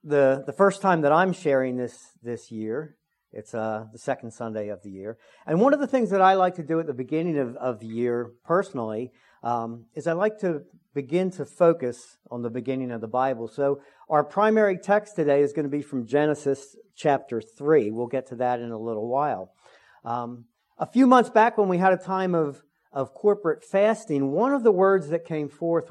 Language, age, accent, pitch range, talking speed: English, 50-69, American, 130-185 Hz, 215 wpm